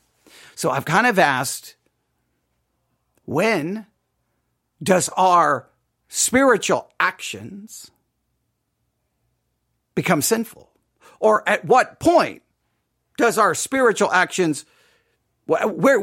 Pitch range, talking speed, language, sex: 165-265 Hz, 80 wpm, English, male